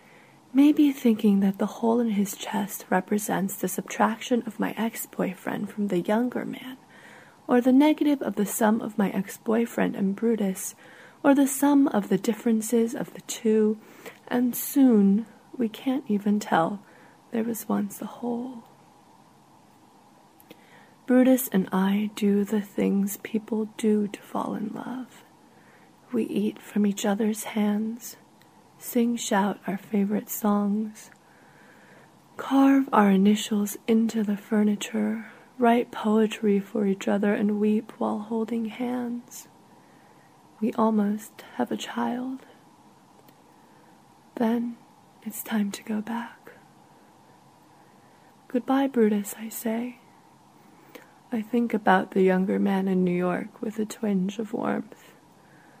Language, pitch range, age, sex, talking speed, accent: English, 205-240 Hz, 30-49, female, 125 wpm, American